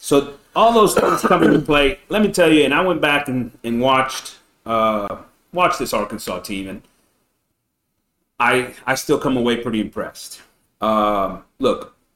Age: 30-49